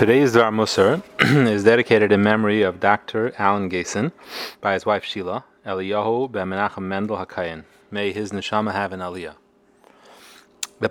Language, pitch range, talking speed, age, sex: English, 100-115 Hz, 140 wpm, 30-49, male